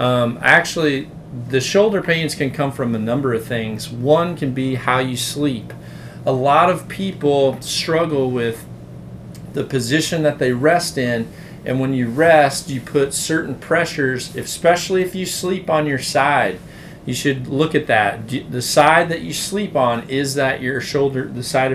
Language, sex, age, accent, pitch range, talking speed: English, male, 40-59, American, 125-160 Hz, 170 wpm